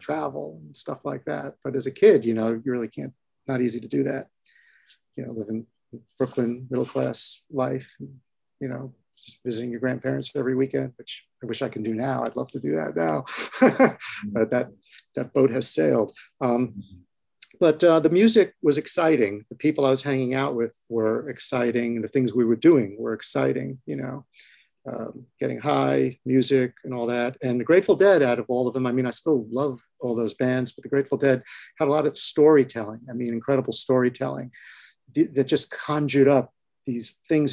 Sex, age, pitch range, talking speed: male, 40-59, 115-140 Hz, 195 wpm